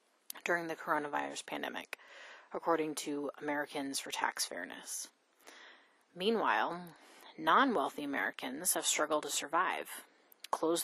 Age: 30-49